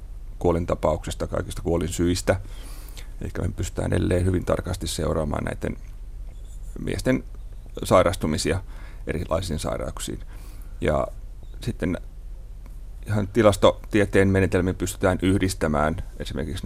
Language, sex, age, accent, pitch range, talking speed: Finnish, male, 30-49, native, 85-100 Hz, 90 wpm